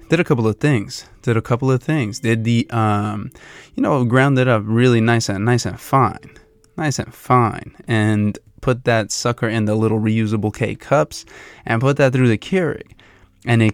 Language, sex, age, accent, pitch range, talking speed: English, male, 20-39, American, 110-130 Hz, 195 wpm